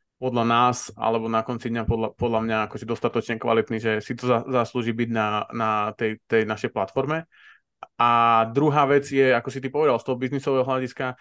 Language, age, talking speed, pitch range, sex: Slovak, 20-39, 200 wpm, 115-130 Hz, male